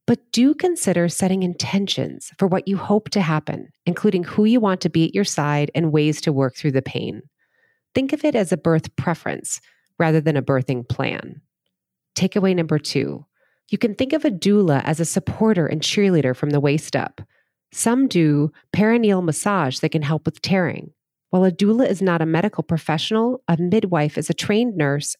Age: 30-49